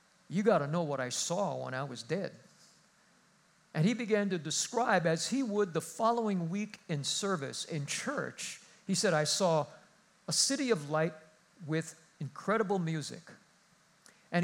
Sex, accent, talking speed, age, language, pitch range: male, American, 160 wpm, 50-69, English, 150-195 Hz